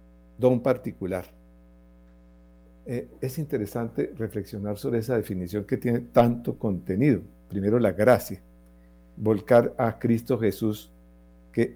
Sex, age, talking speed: male, 60-79, 105 wpm